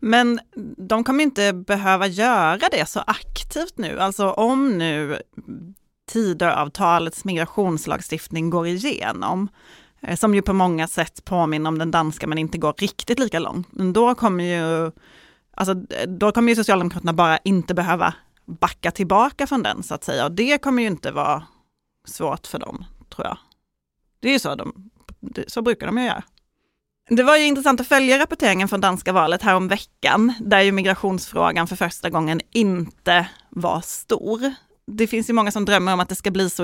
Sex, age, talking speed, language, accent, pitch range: female, 30-49, 170 wpm, Swedish, native, 180-225 Hz